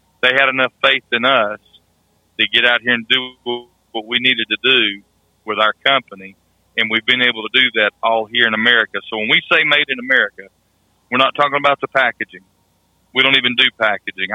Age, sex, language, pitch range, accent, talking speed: 40-59, male, English, 95-120 Hz, American, 205 wpm